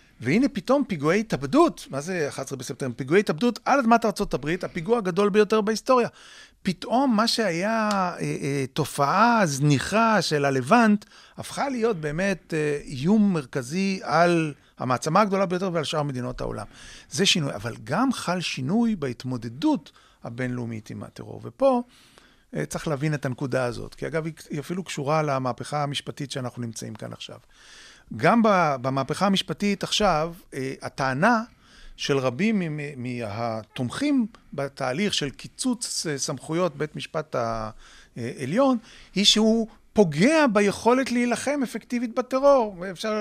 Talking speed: 125 wpm